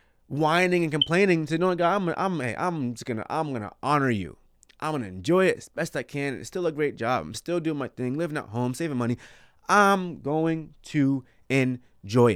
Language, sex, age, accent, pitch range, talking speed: English, male, 20-39, American, 110-155 Hz, 210 wpm